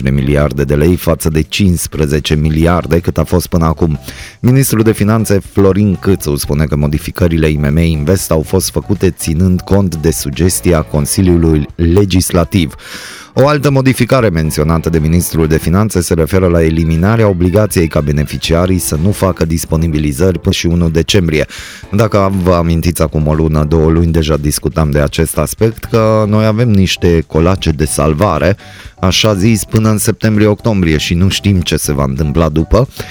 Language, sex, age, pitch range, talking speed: Romanian, male, 20-39, 80-105 Hz, 160 wpm